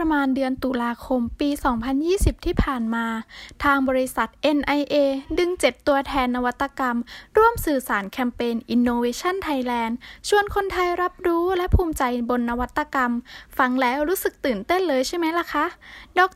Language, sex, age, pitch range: Thai, female, 10-29, 250-335 Hz